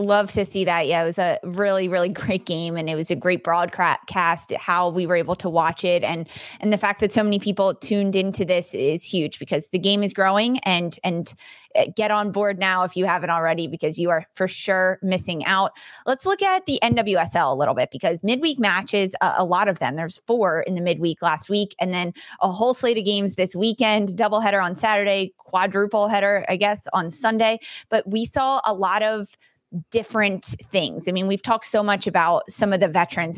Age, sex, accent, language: 20-39, female, American, English